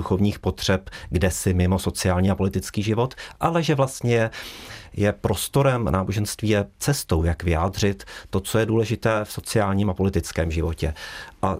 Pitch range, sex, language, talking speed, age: 95-110 Hz, male, Czech, 140 wpm, 40-59